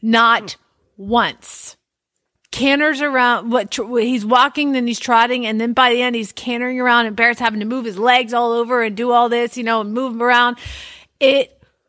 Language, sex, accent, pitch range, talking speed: English, female, American, 215-275 Hz, 195 wpm